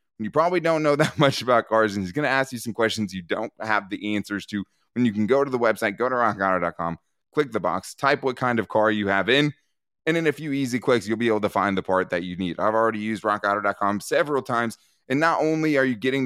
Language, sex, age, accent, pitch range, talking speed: English, male, 20-39, American, 105-135 Hz, 260 wpm